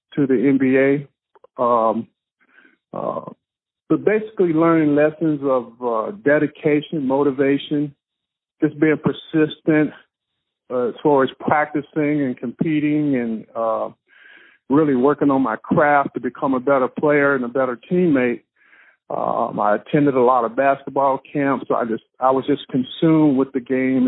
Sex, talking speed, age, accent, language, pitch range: male, 140 wpm, 50-69, American, English, 125-145 Hz